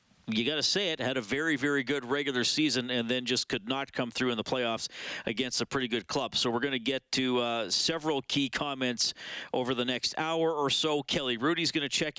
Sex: male